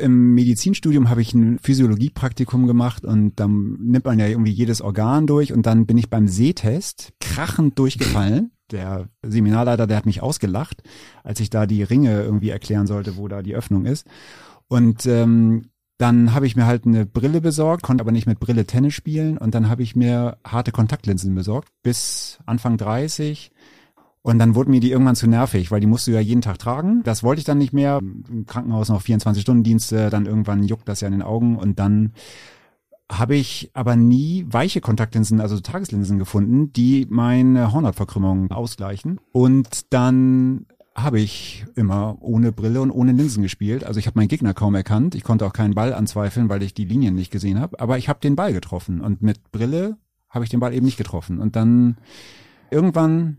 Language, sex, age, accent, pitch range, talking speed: German, male, 30-49, German, 105-130 Hz, 190 wpm